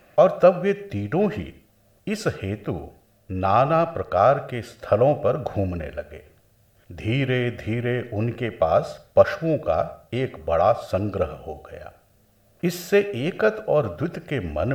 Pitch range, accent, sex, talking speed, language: 100-170 Hz, native, male, 125 wpm, Hindi